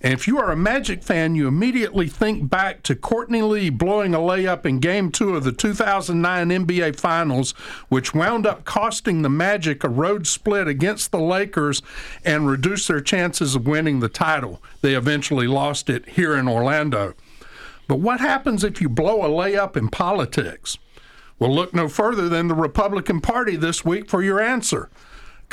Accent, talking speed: American, 180 wpm